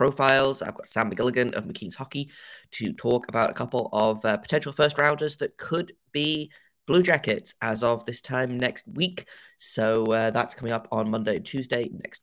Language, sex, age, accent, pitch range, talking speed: English, male, 20-39, British, 115-150 Hz, 180 wpm